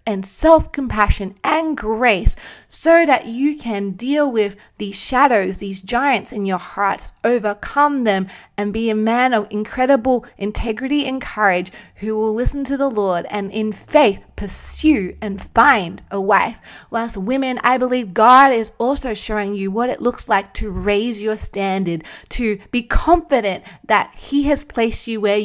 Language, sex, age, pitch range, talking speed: English, female, 20-39, 200-255 Hz, 160 wpm